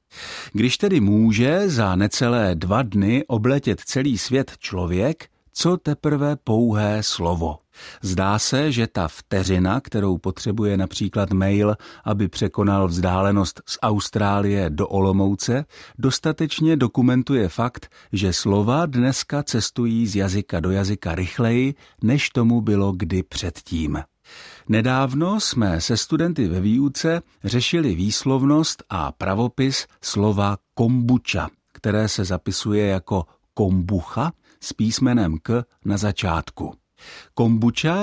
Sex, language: male, Czech